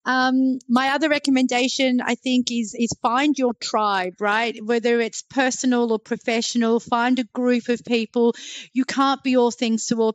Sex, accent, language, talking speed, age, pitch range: female, Australian, English, 170 wpm, 40-59, 210-235 Hz